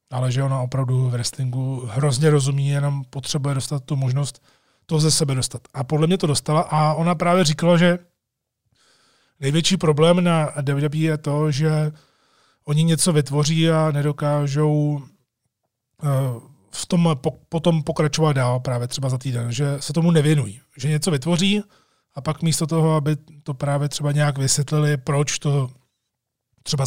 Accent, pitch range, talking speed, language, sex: native, 130-150 Hz, 150 wpm, Czech, male